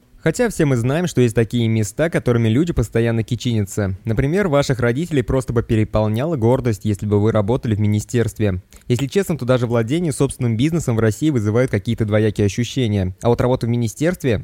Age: 20-39